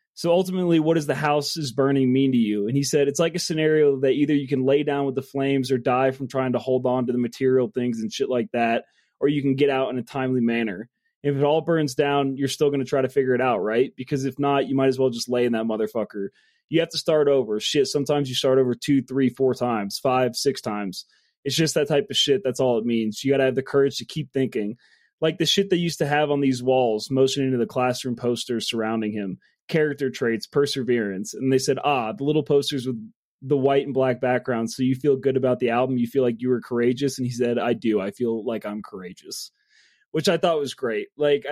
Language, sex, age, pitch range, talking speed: English, male, 20-39, 120-145 Hz, 255 wpm